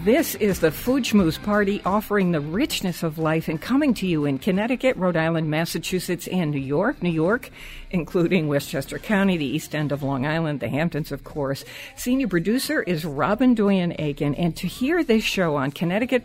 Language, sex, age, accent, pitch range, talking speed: English, female, 60-79, American, 160-215 Hz, 185 wpm